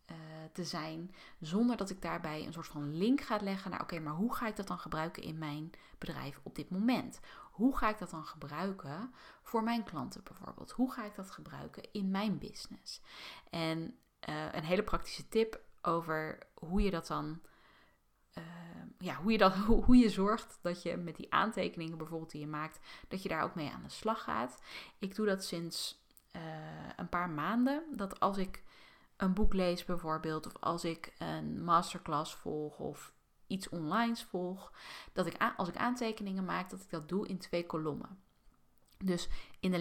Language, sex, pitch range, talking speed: Dutch, female, 165-210 Hz, 185 wpm